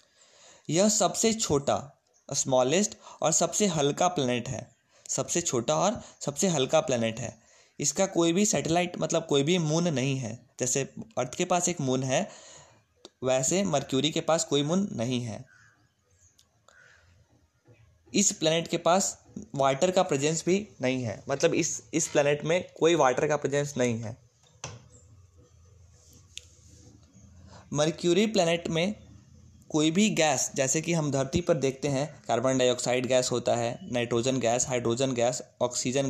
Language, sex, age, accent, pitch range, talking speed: Hindi, male, 20-39, native, 125-165 Hz, 140 wpm